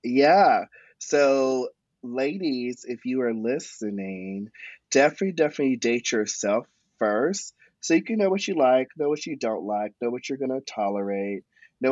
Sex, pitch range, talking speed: male, 105-135 Hz, 155 wpm